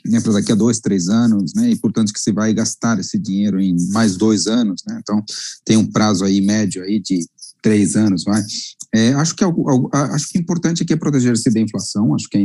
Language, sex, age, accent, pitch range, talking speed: Portuguese, male, 40-59, Brazilian, 110-140 Hz, 230 wpm